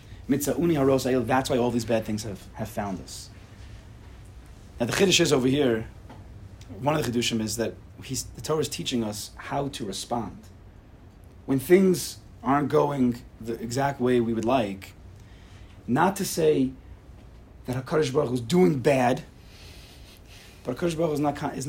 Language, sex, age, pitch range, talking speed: English, male, 30-49, 100-150 Hz, 160 wpm